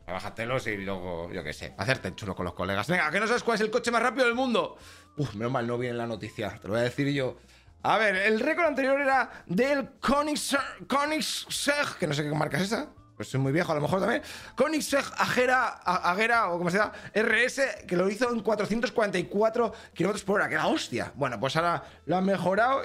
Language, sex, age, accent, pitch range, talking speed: Spanish, male, 20-39, Spanish, 130-220 Hz, 220 wpm